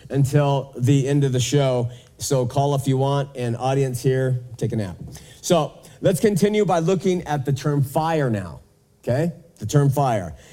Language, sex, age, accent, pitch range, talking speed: English, male, 40-59, American, 135-175 Hz, 175 wpm